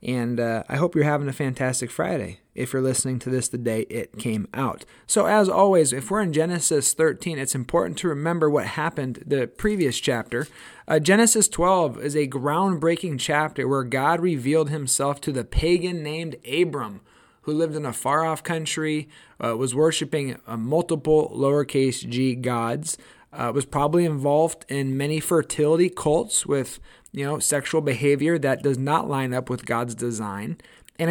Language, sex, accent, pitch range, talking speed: English, male, American, 130-170 Hz, 170 wpm